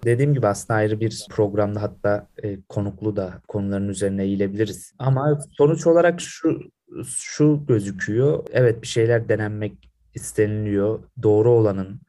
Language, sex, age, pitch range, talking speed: Turkish, male, 30-49, 100-115 Hz, 125 wpm